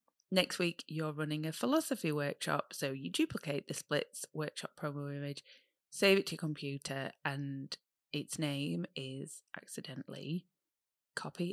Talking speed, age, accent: 135 wpm, 20-39, British